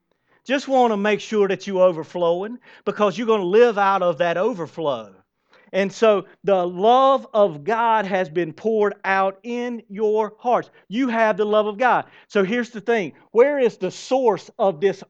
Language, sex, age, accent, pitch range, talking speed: English, male, 40-59, American, 170-225 Hz, 185 wpm